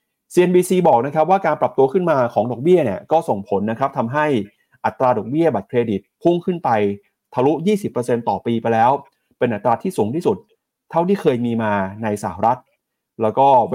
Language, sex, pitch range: Thai, male, 115-160 Hz